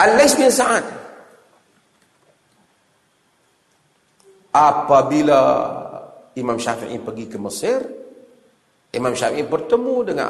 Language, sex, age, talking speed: Malay, male, 40-59, 75 wpm